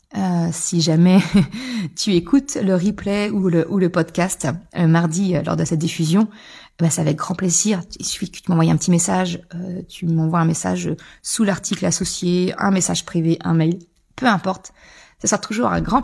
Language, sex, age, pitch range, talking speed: French, female, 30-49, 175-220 Hz, 195 wpm